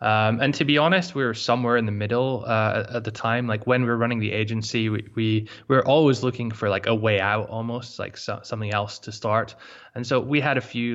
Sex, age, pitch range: male, 20-39, 105-120 Hz